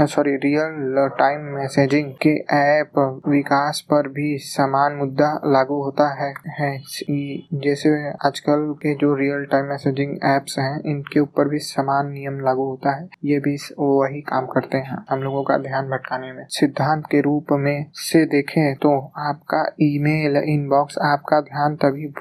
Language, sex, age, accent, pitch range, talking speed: Hindi, male, 20-39, native, 140-150 Hz, 155 wpm